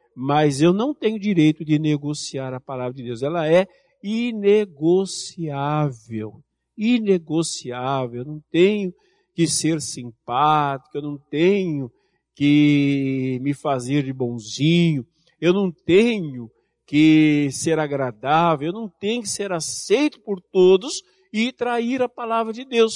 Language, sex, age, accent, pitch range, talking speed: Portuguese, male, 50-69, Brazilian, 150-225 Hz, 130 wpm